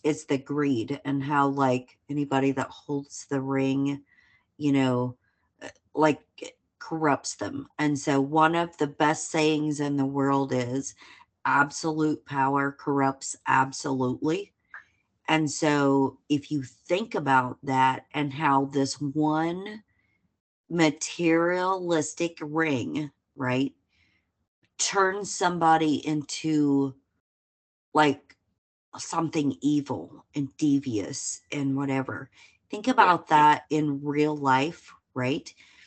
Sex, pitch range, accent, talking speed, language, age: female, 135-155 Hz, American, 105 wpm, English, 40-59